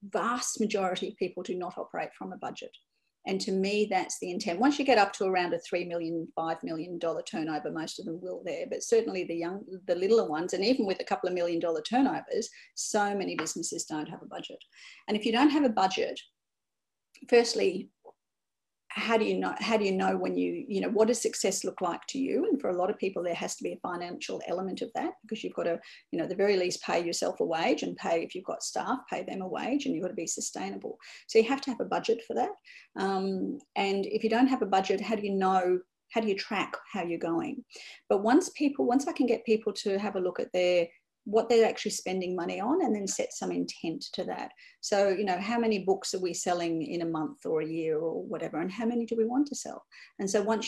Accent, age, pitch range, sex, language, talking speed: Australian, 40-59, 180-230 Hz, female, English, 250 wpm